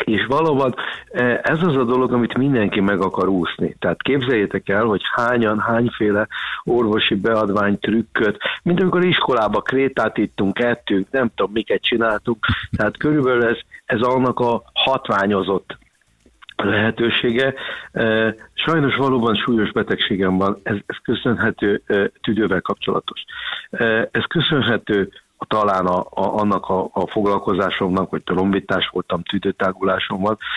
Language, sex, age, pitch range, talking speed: Hungarian, male, 50-69, 100-120 Hz, 120 wpm